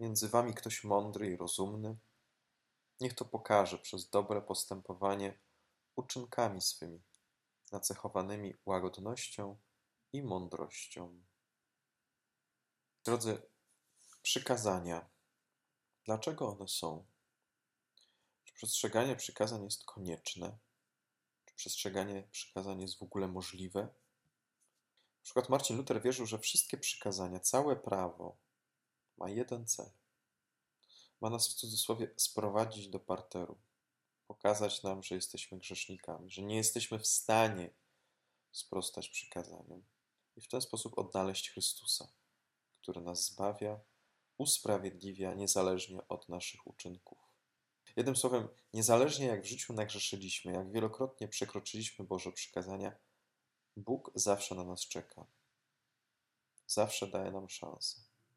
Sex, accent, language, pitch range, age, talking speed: male, native, Polish, 85-110 Hz, 20-39, 105 wpm